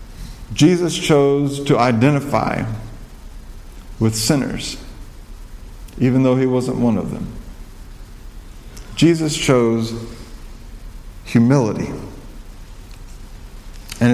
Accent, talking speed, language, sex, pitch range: American, 70 wpm, English, male, 115-155 Hz